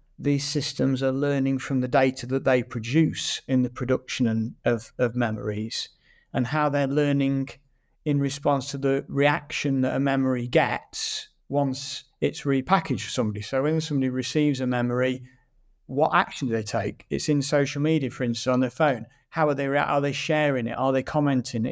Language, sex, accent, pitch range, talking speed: English, male, British, 125-150 Hz, 175 wpm